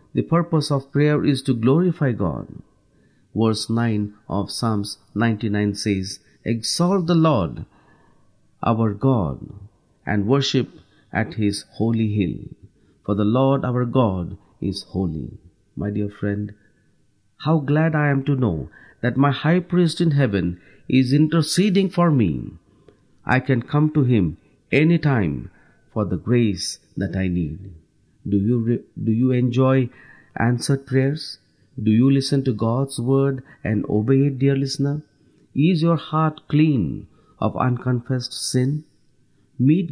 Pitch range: 105-145 Hz